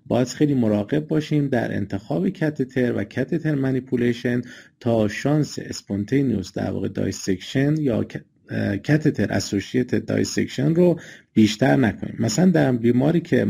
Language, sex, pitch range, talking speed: Persian, male, 105-145 Hz, 120 wpm